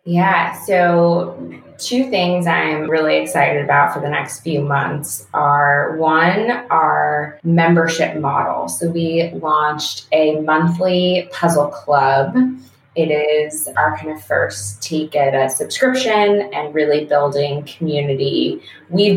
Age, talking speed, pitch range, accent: 20-39, 125 wpm, 145-180 Hz, American